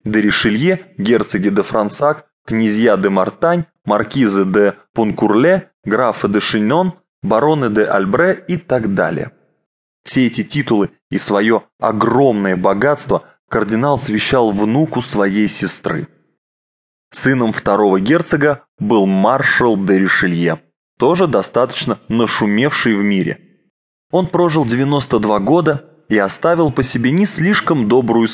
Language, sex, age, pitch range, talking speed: English, male, 20-39, 105-145 Hz, 115 wpm